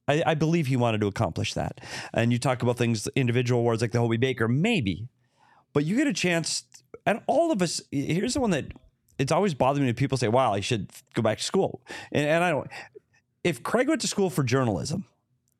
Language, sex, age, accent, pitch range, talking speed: English, male, 40-59, American, 120-155 Hz, 225 wpm